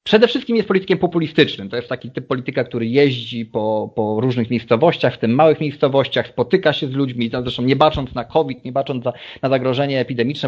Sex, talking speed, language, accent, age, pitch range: male, 195 wpm, Polish, native, 30-49, 120-165 Hz